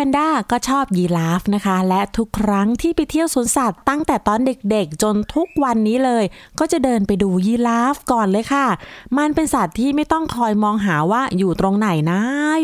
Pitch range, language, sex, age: 195-280 Hz, Thai, female, 20-39